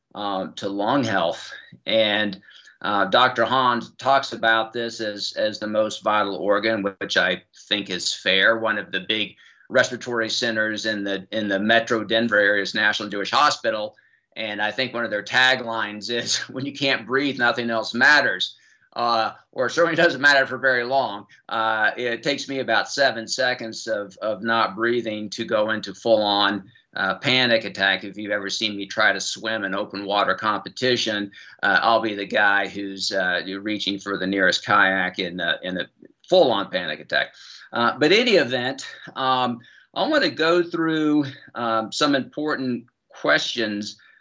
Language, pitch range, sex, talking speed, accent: English, 105-125 Hz, male, 170 wpm, American